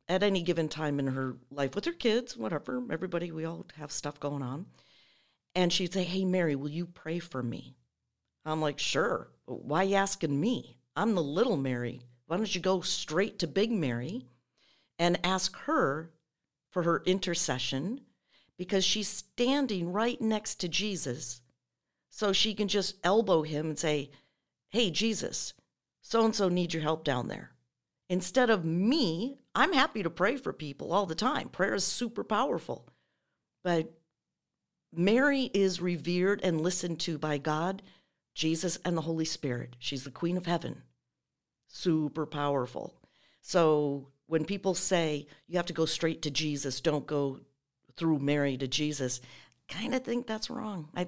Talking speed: 160 wpm